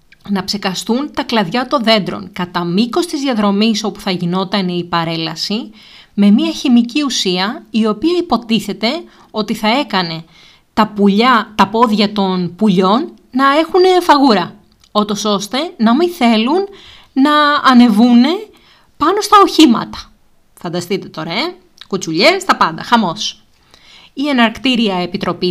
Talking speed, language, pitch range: 125 wpm, Greek, 185-255 Hz